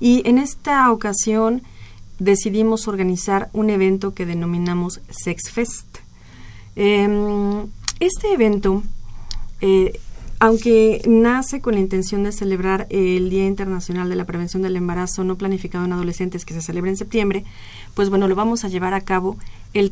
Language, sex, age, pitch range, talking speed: Spanish, female, 40-59, 185-215 Hz, 150 wpm